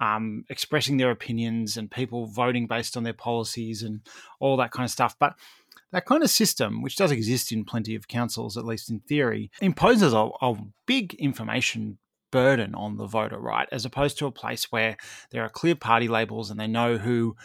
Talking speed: 200 wpm